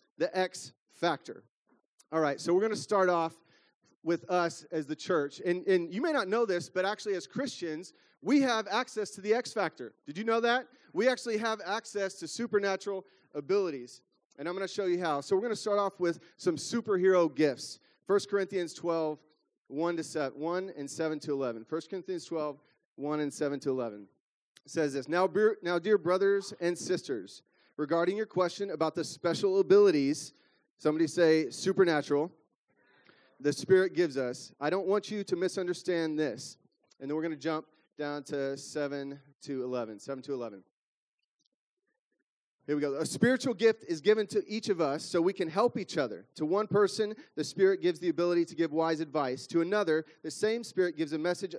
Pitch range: 150-200 Hz